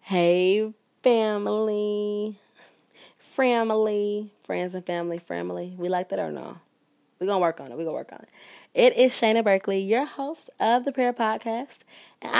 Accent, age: American, 20-39